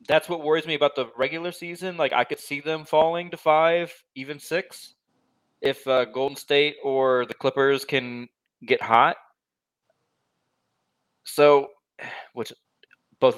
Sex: male